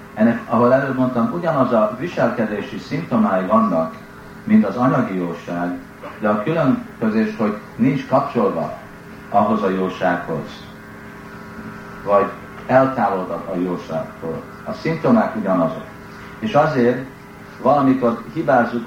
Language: Hungarian